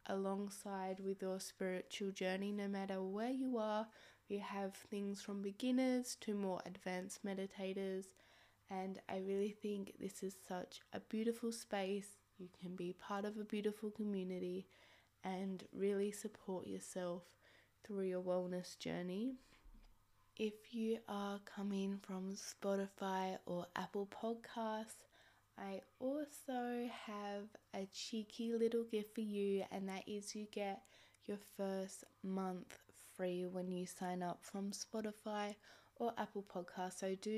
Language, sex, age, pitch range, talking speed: English, female, 10-29, 190-220 Hz, 135 wpm